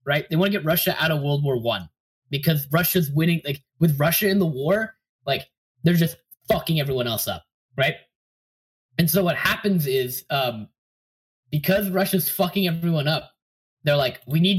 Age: 10-29